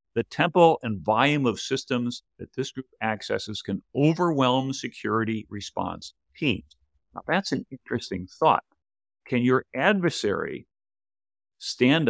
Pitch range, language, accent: 105-150 Hz, English, American